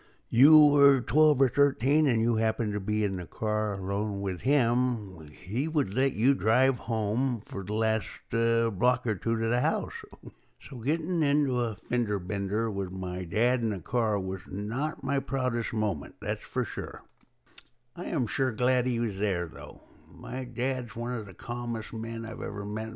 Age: 60-79